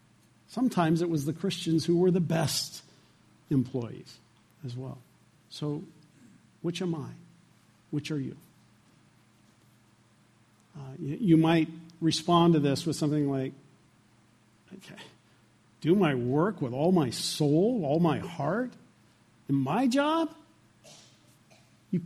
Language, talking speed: English, 115 wpm